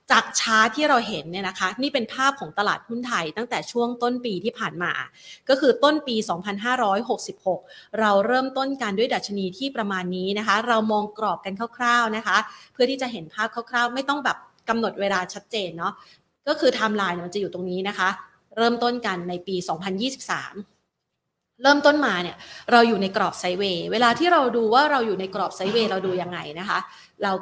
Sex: female